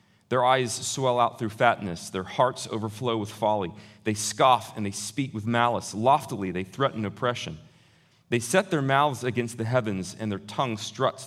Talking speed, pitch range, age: 175 wpm, 105-135 Hz, 30-49